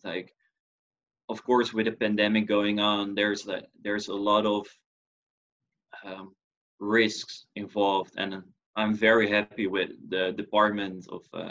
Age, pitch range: 20-39, 100-110 Hz